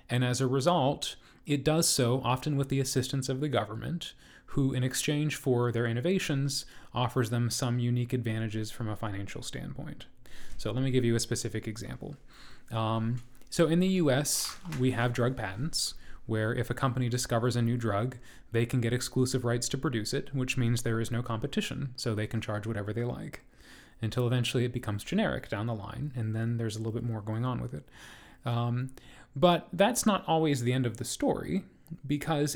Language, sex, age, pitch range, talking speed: English, male, 30-49, 115-140 Hz, 195 wpm